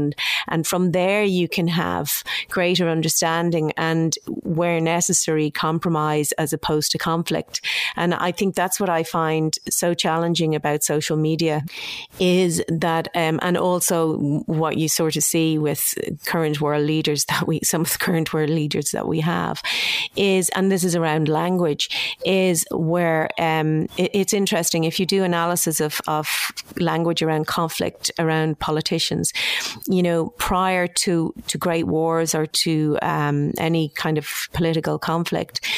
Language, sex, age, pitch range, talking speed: English, female, 40-59, 155-175 Hz, 150 wpm